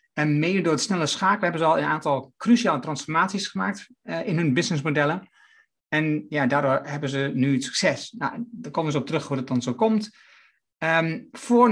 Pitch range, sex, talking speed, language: 145-200 Hz, male, 200 wpm, Dutch